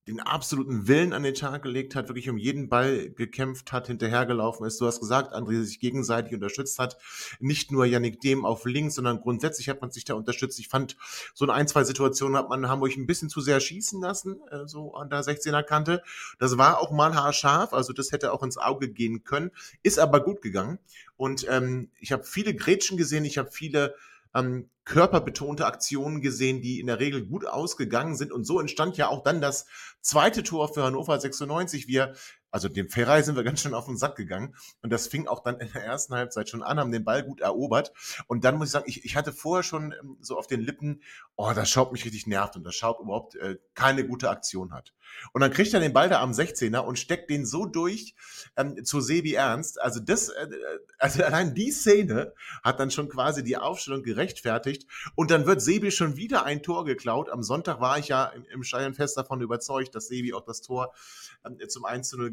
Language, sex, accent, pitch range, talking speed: German, male, German, 125-150 Hz, 210 wpm